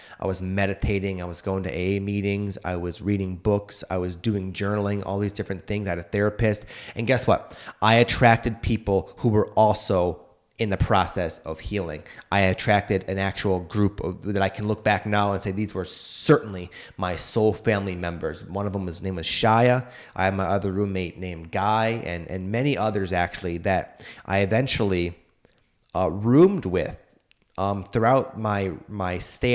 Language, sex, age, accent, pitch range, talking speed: English, male, 30-49, American, 95-120 Hz, 185 wpm